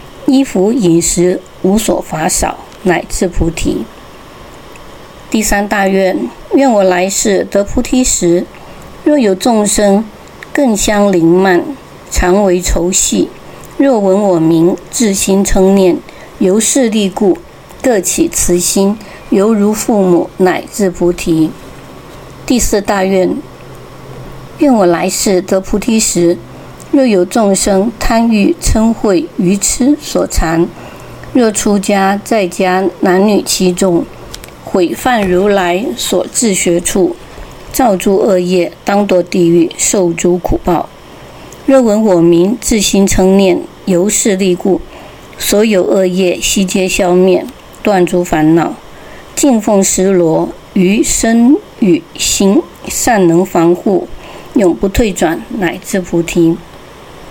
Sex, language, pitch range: female, English, 180-220 Hz